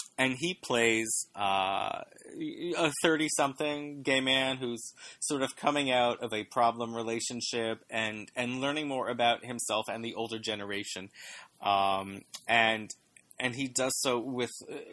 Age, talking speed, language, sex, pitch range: 30-49, 135 wpm, English, male, 110-130 Hz